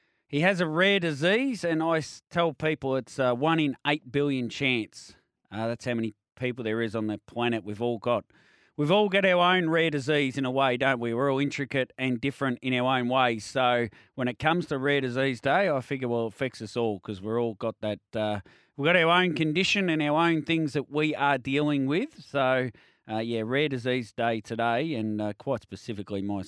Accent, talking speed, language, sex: Australian, 220 wpm, English, male